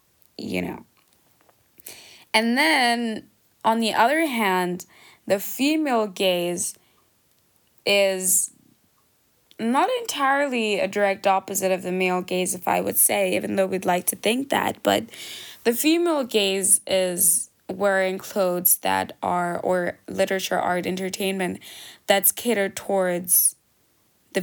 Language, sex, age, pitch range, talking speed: English, female, 20-39, 185-220 Hz, 120 wpm